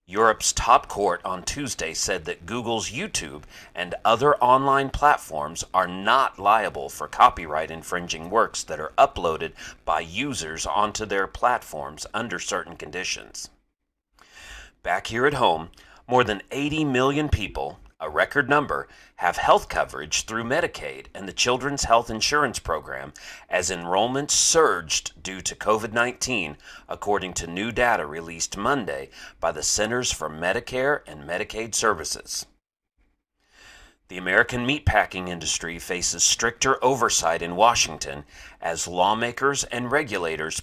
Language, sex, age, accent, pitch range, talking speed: English, male, 40-59, American, 90-130 Hz, 130 wpm